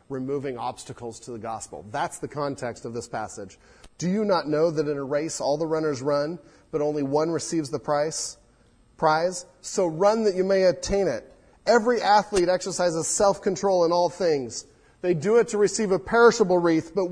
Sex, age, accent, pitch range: male, 30-49, American, 115-160 Hz